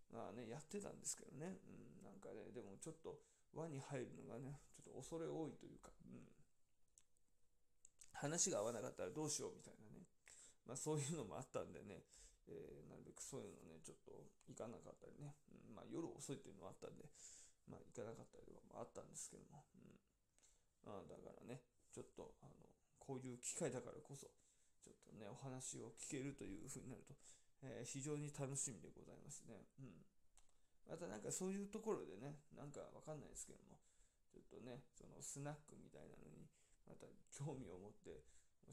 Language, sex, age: Japanese, male, 20-39